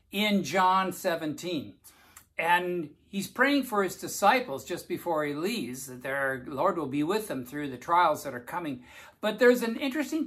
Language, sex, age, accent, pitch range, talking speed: English, male, 60-79, American, 140-210 Hz, 175 wpm